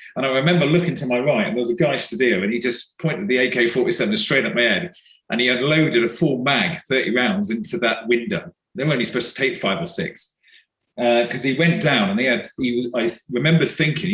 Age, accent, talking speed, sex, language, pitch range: 40-59, British, 240 wpm, male, English, 125-185 Hz